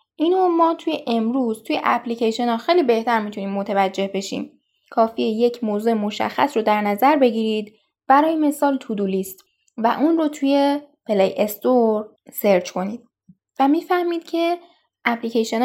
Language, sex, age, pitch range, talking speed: Persian, female, 10-29, 210-285 Hz, 130 wpm